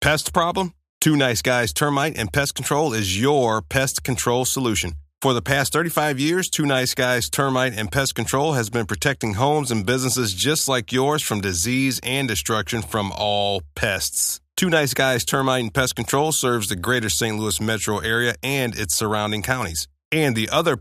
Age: 30-49